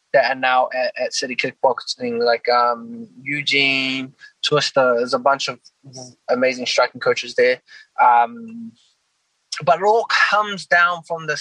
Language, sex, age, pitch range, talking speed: English, male, 20-39, 135-185 Hz, 140 wpm